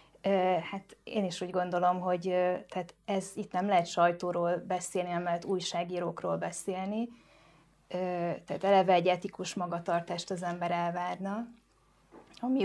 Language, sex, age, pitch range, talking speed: Hungarian, female, 20-39, 175-195 Hz, 120 wpm